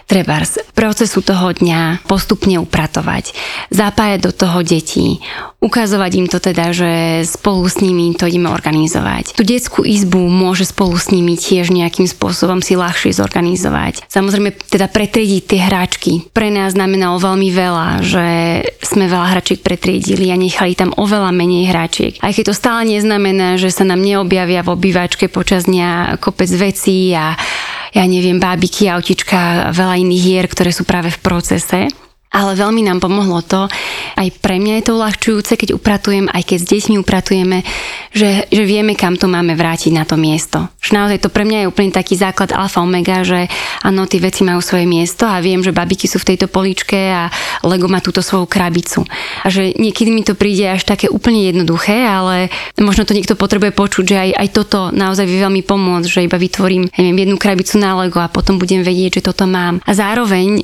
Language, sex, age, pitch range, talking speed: Slovak, female, 30-49, 180-200 Hz, 185 wpm